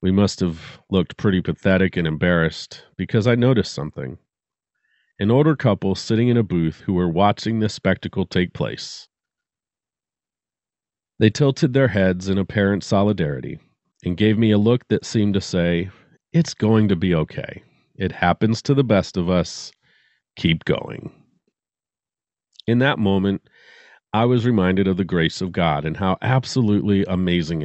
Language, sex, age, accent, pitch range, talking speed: English, male, 40-59, American, 95-120 Hz, 155 wpm